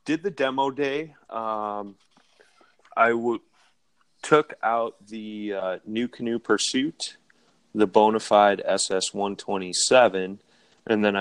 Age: 30-49